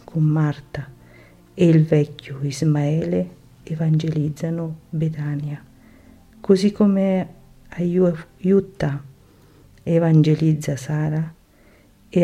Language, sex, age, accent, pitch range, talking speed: Italian, female, 50-69, native, 145-170 Hz, 65 wpm